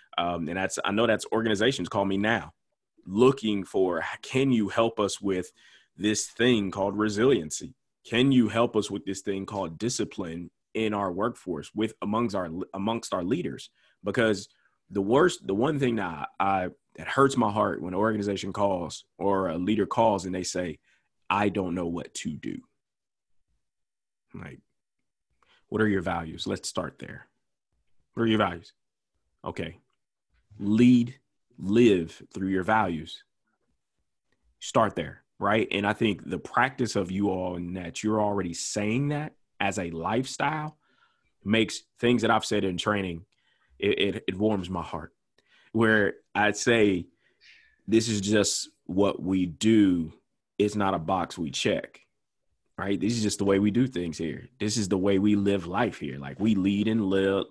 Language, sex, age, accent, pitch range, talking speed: English, male, 20-39, American, 95-110 Hz, 165 wpm